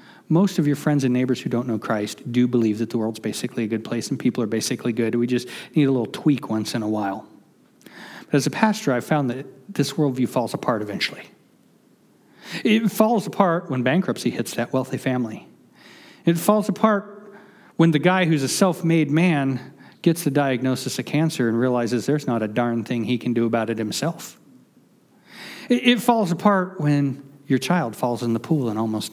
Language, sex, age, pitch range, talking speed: English, male, 40-59, 120-180 Hz, 195 wpm